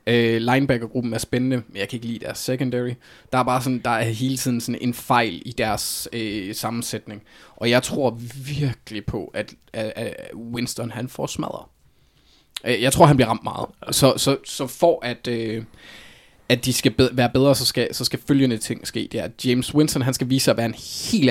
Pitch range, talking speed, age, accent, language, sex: 115-130 Hz, 205 wpm, 20-39, native, Danish, male